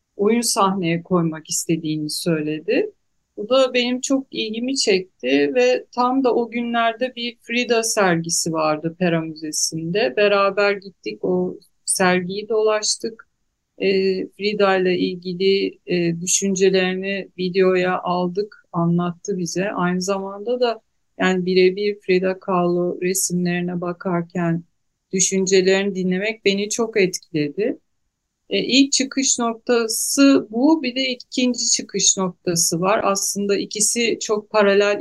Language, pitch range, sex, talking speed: Turkish, 175-225 Hz, female, 110 wpm